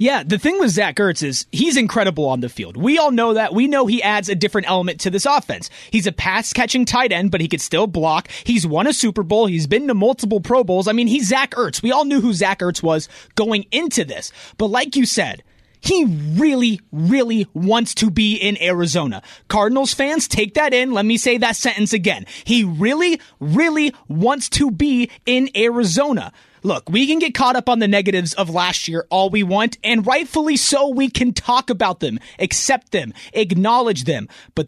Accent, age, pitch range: American, 30-49, 195-260 Hz